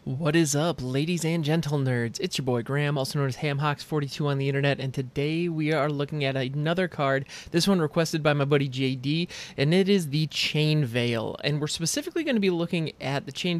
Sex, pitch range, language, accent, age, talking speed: male, 140-175 Hz, English, American, 20-39, 215 wpm